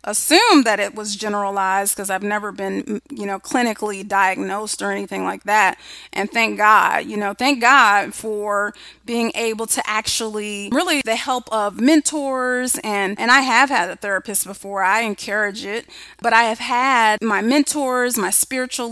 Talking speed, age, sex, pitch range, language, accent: 170 wpm, 30-49, female, 205-240 Hz, English, American